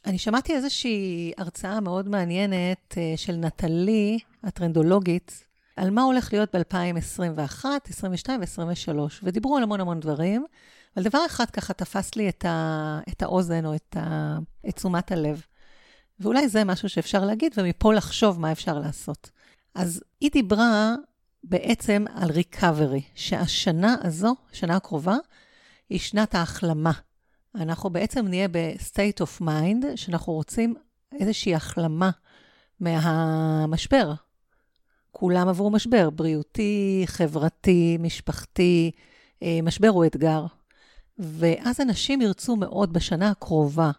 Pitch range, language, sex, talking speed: 165-210 Hz, Hebrew, female, 115 wpm